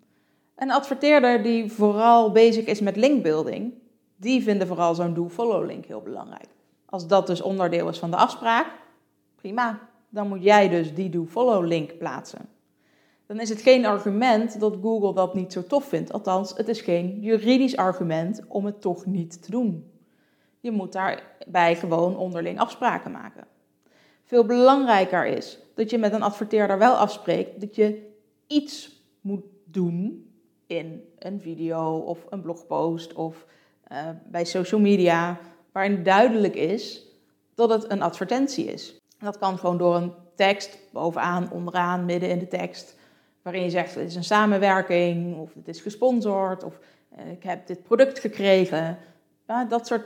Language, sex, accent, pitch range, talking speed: Dutch, female, Dutch, 175-225 Hz, 155 wpm